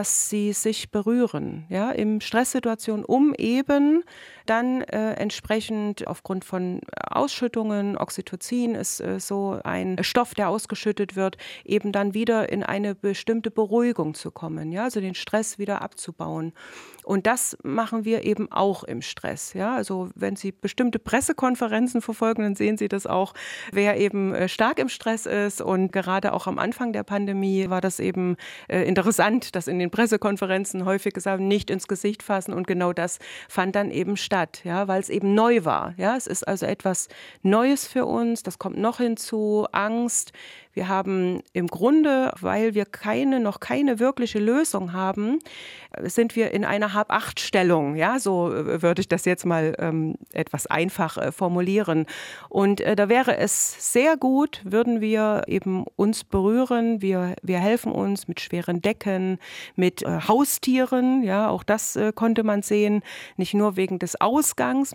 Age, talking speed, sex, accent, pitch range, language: 30-49, 160 wpm, female, German, 190-230 Hz, German